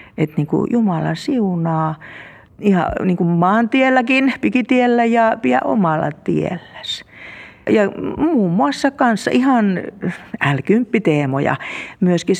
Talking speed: 95 wpm